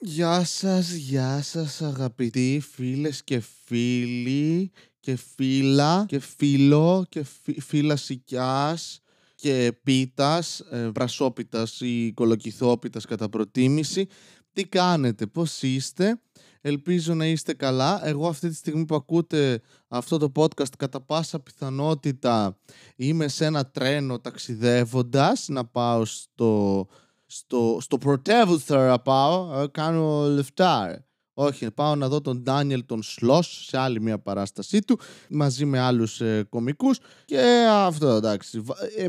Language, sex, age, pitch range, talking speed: Greek, male, 20-39, 120-155 Hz, 115 wpm